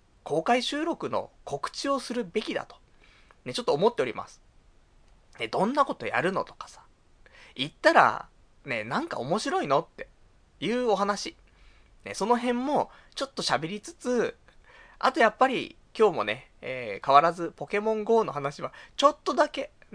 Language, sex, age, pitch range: Japanese, male, 20-39, 170-280 Hz